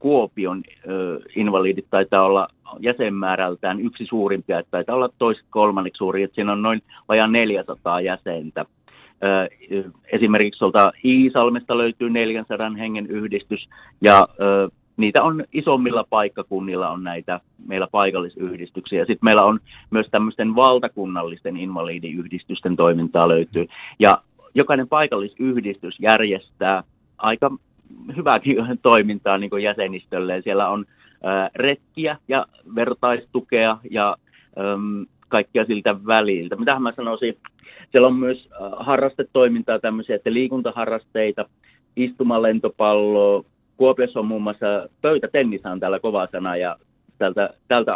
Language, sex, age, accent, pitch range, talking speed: Finnish, male, 30-49, native, 95-115 Hz, 110 wpm